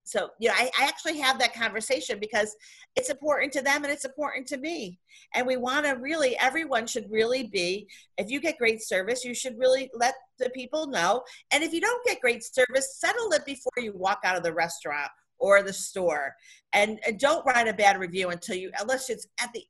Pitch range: 195-285 Hz